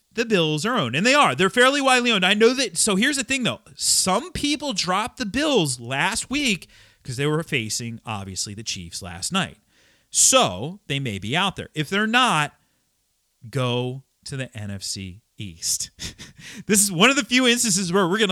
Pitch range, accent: 120-195 Hz, American